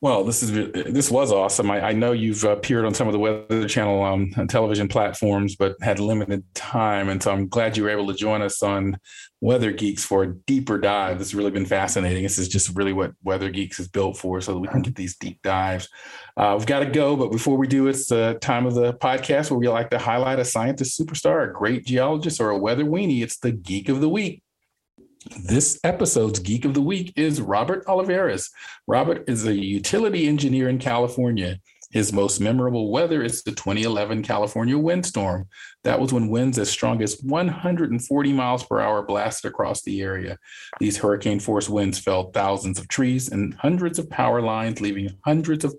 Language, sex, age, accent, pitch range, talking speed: English, male, 40-59, American, 100-130 Hz, 205 wpm